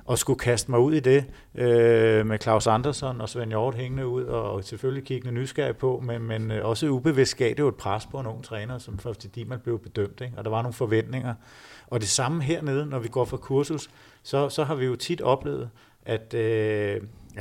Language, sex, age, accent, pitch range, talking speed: Danish, male, 50-69, native, 110-130 Hz, 230 wpm